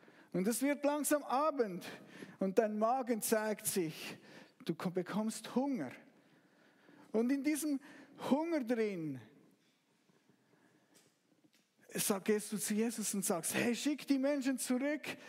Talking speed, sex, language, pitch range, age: 115 wpm, male, German, 180-255 Hz, 50-69